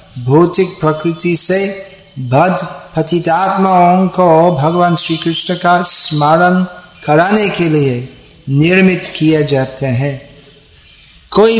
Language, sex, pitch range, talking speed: Hindi, male, 155-185 Hz, 95 wpm